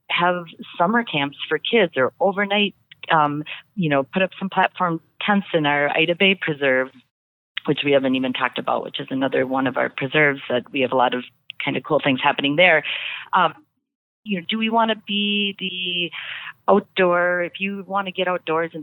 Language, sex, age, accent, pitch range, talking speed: English, female, 40-59, American, 140-180 Hz, 200 wpm